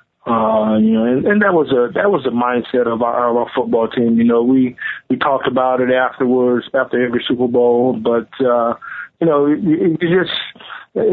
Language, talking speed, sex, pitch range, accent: English, 195 wpm, male, 115-135 Hz, American